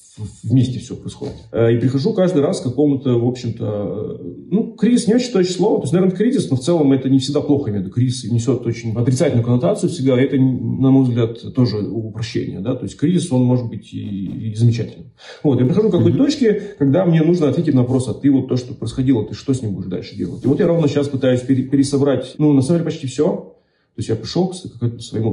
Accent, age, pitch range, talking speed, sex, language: native, 40-59, 115-145 Hz, 225 wpm, male, Russian